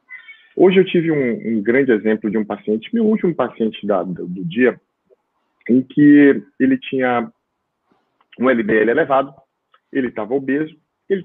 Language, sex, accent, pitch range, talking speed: Portuguese, male, Brazilian, 120-175 Hz, 150 wpm